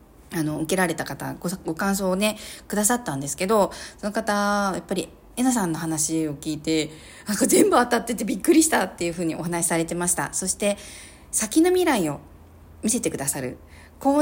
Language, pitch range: Japanese, 140-210 Hz